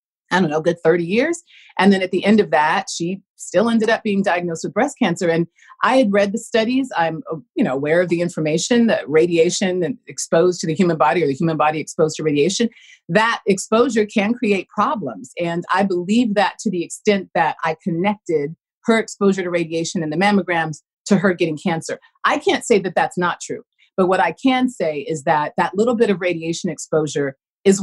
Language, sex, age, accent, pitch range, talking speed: English, female, 40-59, American, 155-205 Hz, 210 wpm